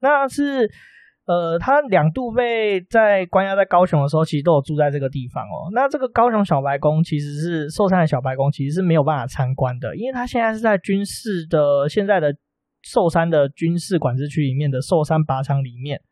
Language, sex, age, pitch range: Chinese, male, 20-39, 140-190 Hz